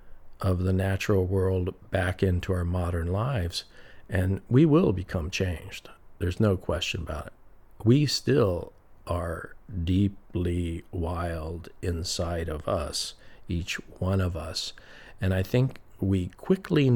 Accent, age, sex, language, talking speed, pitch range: American, 50-69, male, English, 125 wpm, 85-100 Hz